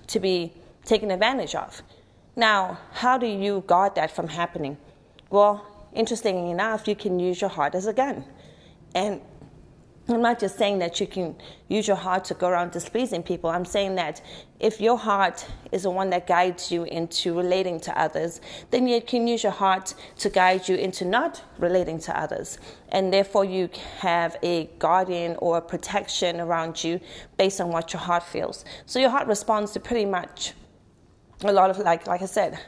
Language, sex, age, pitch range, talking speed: English, female, 30-49, 175-205 Hz, 185 wpm